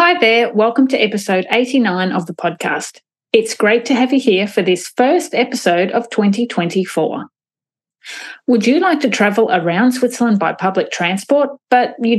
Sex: female